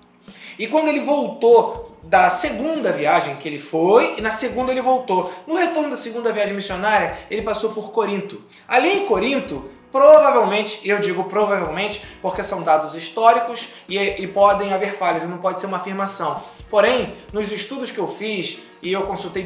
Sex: male